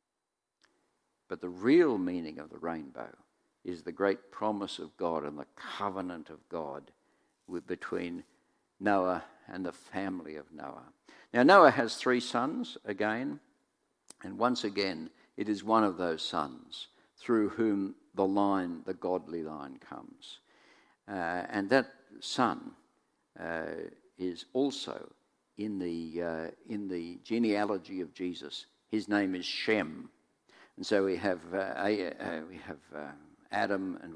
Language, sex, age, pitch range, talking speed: English, male, 50-69, 90-105 Hz, 135 wpm